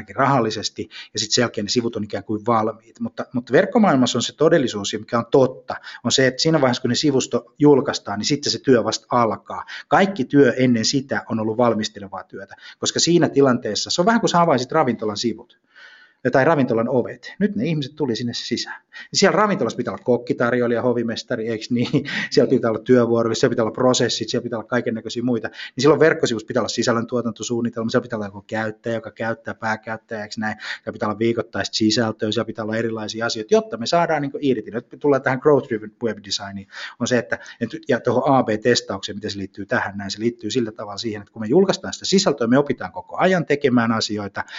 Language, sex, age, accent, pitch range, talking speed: Finnish, male, 20-39, native, 110-140 Hz, 200 wpm